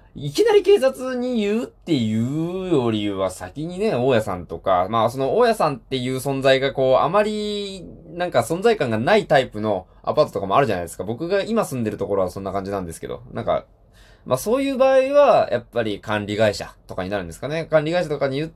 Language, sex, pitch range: Japanese, male, 100-165 Hz